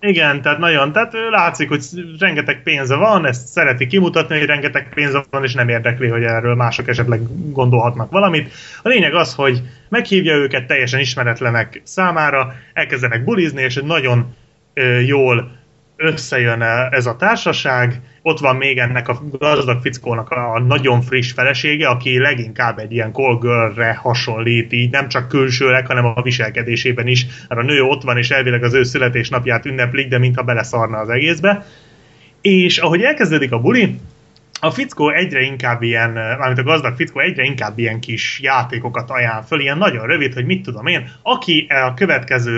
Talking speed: 165 wpm